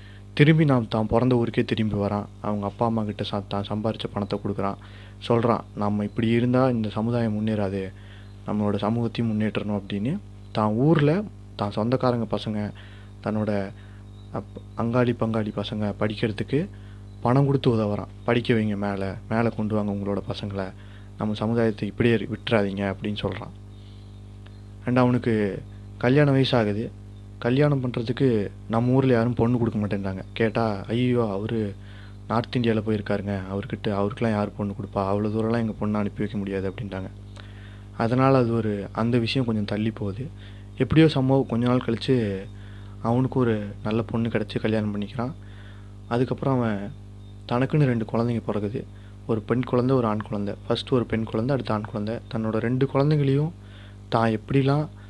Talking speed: 135 wpm